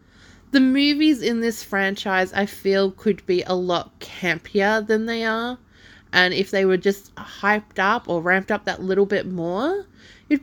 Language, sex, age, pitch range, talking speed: English, female, 20-39, 180-230 Hz, 175 wpm